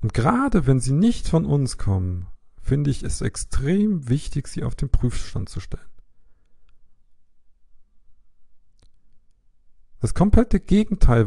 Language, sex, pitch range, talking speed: German, male, 85-125 Hz, 115 wpm